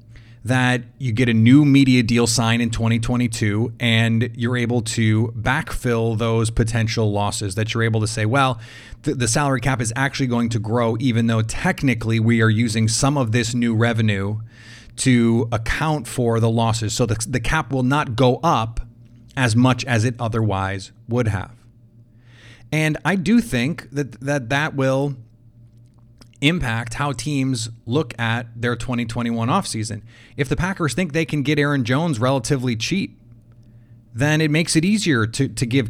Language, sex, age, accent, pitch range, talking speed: English, male, 30-49, American, 115-140 Hz, 165 wpm